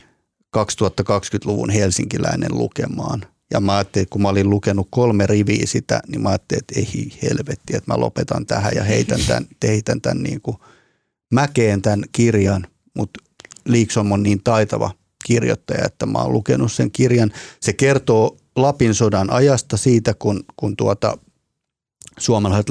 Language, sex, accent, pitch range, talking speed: Finnish, male, native, 100-120 Hz, 135 wpm